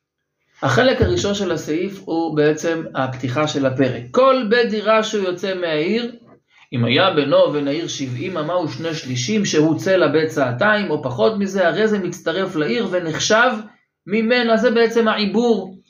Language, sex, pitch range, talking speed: Hebrew, male, 155-215 Hz, 150 wpm